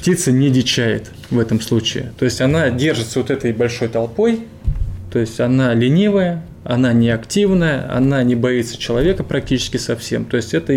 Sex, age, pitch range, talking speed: male, 20-39, 115-140 Hz, 160 wpm